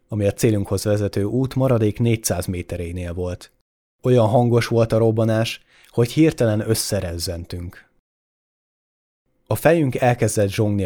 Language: Hungarian